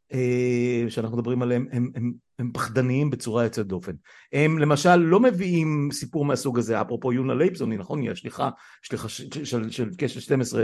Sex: male